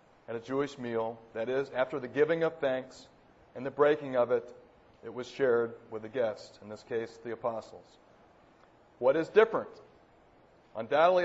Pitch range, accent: 120-155 Hz, American